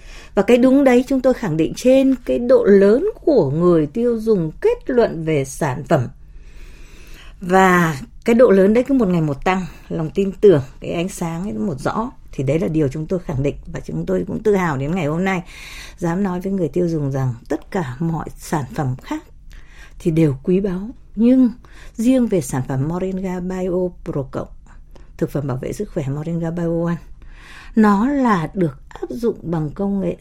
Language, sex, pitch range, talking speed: Vietnamese, female, 165-245 Hz, 200 wpm